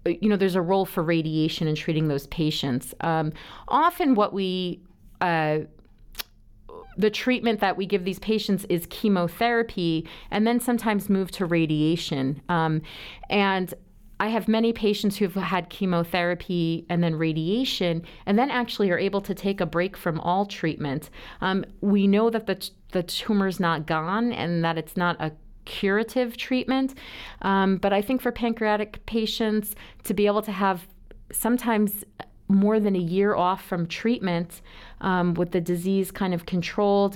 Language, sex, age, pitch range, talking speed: English, female, 40-59, 170-205 Hz, 160 wpm